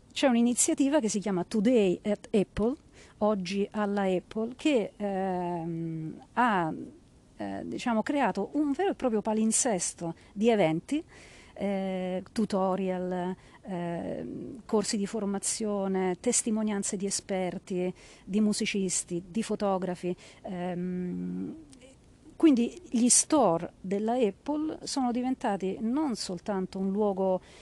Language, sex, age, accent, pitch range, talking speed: Italian, female, 40-59, native, 185-240 Hz, 105 wpm